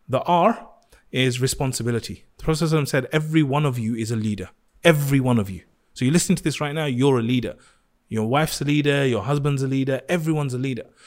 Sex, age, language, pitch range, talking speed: male, 30-49, English, 135-180 Hz, 210 wpm